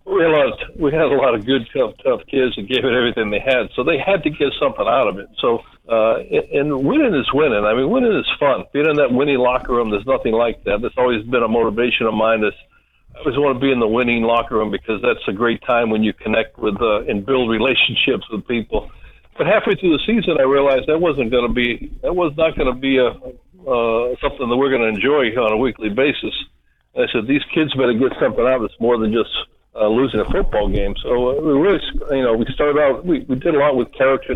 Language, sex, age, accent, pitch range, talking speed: English, male, 60-79, American, 115-135 Hz, 255 wpm